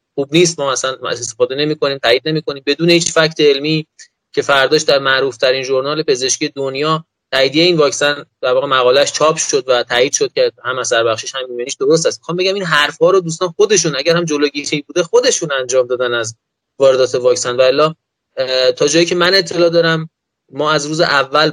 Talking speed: 195 wpm